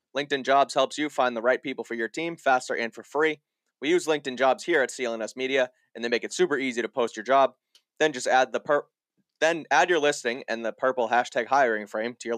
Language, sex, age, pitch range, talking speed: English, male, 20-39, 115-145 Hz, 240 wpm